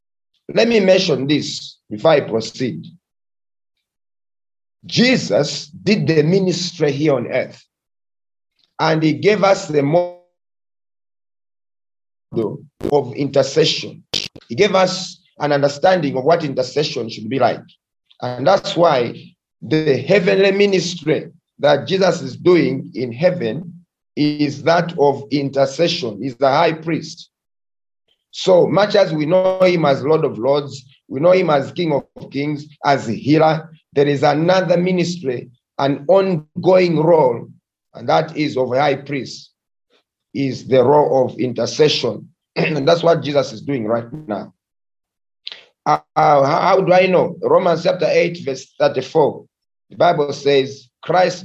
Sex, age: male, 50-69